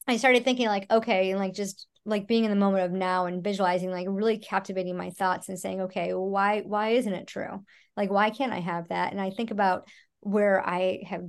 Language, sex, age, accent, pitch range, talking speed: English, male, 30-49, American, 185-225 Hz, 225 wpm